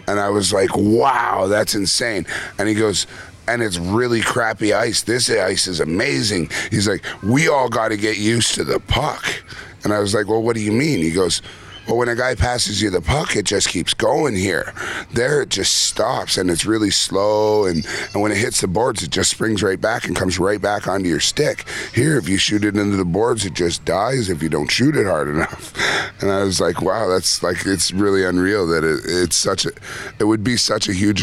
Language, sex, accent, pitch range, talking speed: English, male, American, 90-105 Hz, 230 wpm